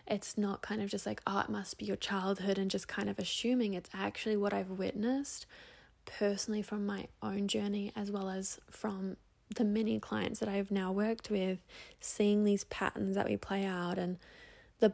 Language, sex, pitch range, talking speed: English, female, 190-220 Hz, 195 wpm